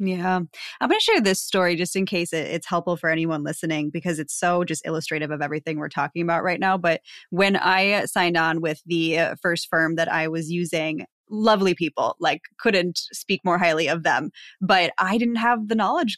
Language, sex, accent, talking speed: English, female, American, 205 wpm